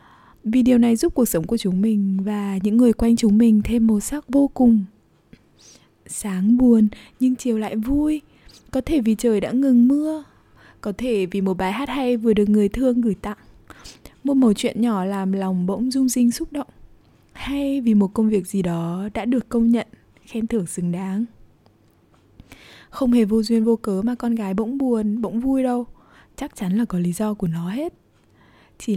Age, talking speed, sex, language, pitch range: 20-39, 200 wpm, female, Vietnamese, 205-255 Hz